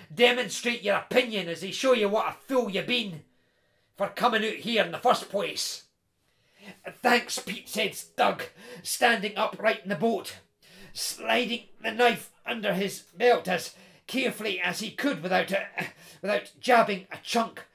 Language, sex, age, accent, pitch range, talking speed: English, male, 40-59, British, 200-255 Hz, 155 wpm